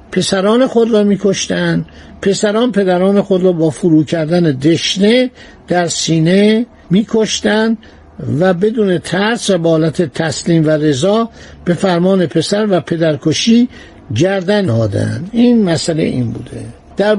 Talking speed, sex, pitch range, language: 120 wpm, male, 160-210 Hz, Persian